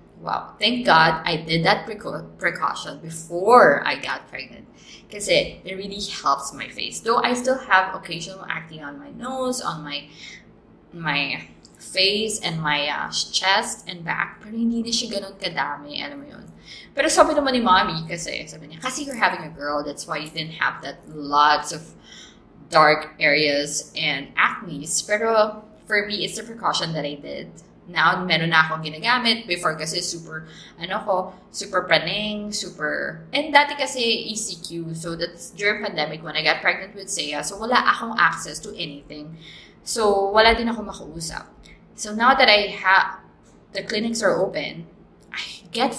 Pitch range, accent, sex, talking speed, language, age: 160-215 Hz, Filipino, female, 160 wpm, English, 20-39